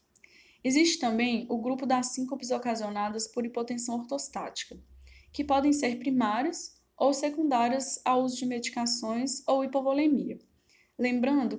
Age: 10-29